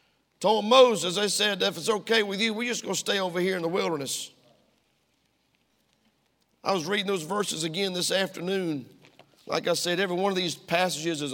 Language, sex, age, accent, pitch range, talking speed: English, male, 50-69, American, 180-220 Hz, 190 wpm